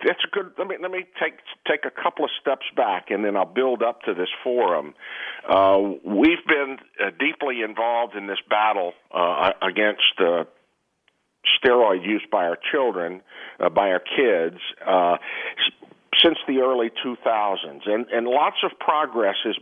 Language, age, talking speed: English, 50-69, 165 wpm